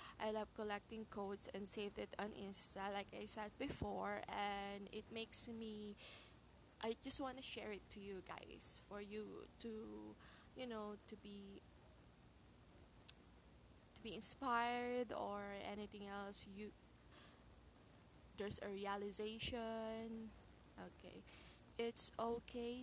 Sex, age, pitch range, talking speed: female, 20-39, 200-230 Hz, 120 wpm